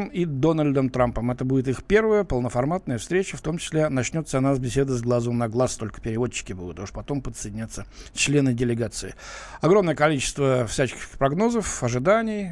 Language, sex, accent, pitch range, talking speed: Russian, male, native, 125-185 Hz, 160 wpm